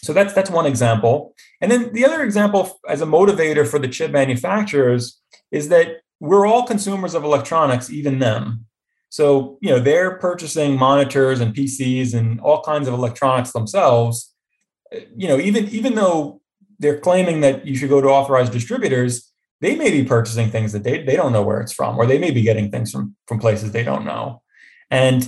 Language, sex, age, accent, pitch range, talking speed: English, male, 20-39, American, 125-175 Hz, 190 wpm